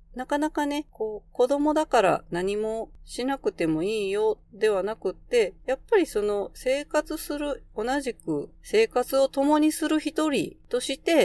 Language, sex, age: Japanese, female, 40-59